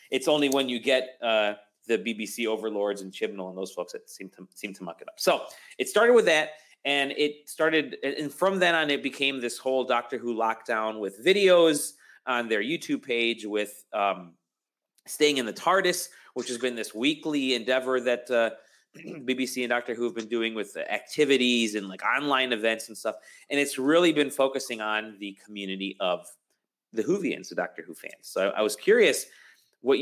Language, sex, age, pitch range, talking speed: English, male, 30-49, 115-150 Hz, 195 wpm